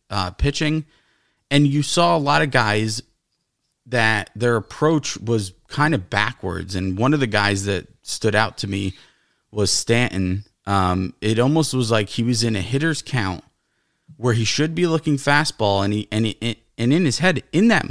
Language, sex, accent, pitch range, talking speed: English, male, American, 110-160 Hz, 185 wpm